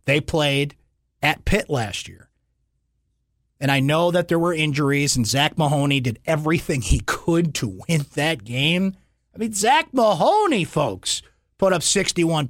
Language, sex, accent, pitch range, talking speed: English, male, American, 125-170 Hz, 155 wpm